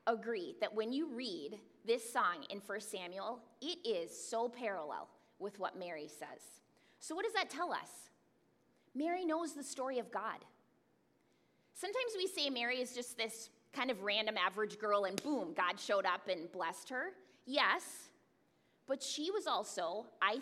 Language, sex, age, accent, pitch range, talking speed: English, female, 20-39, American, 215-320 Hz, 165 wpm